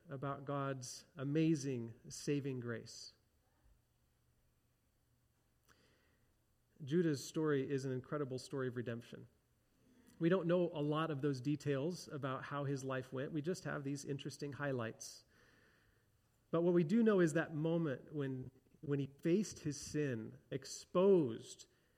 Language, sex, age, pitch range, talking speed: English, male, 40-59, 120-160 Hz, 130 wpm